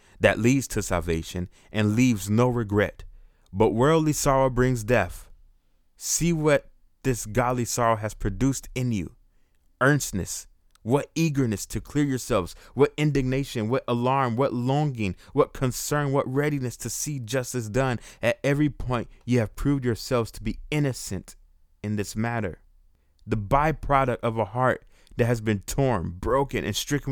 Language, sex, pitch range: English, male, 105-130 Hz